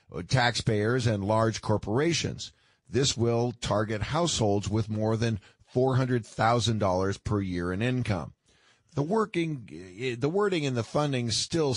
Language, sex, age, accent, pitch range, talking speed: English, male, 50-69, American, 105-130 Hz, 140 wpm